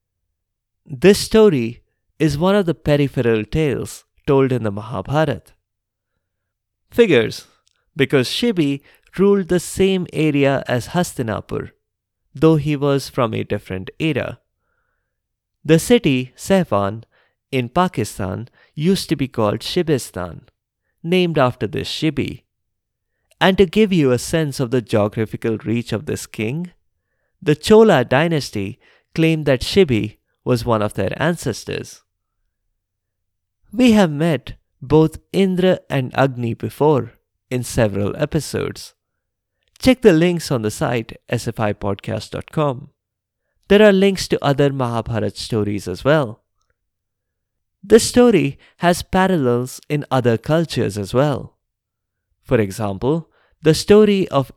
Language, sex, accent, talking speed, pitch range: English, male, Indian, 120 wpm, 105-155 Hz